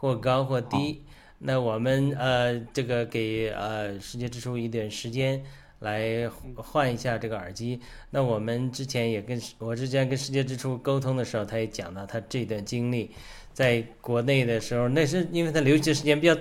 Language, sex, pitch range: Chinese, male, 115-140 Hz